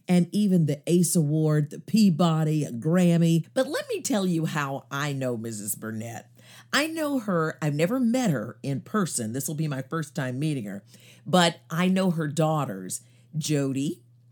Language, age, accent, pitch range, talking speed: English, 50-69, American, 130-175 Hz, 175 wpm